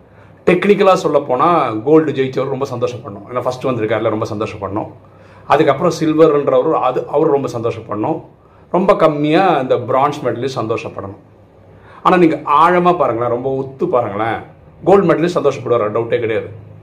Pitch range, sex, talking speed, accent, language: 120-170 Hz, male, 130 wpm, native, Tamil